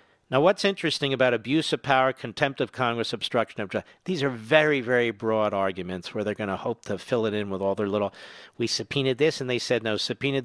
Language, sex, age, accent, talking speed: English, male, 50-69, American, 230 wpm